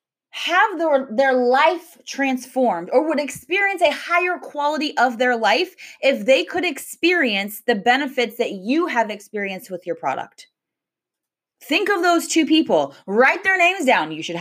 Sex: female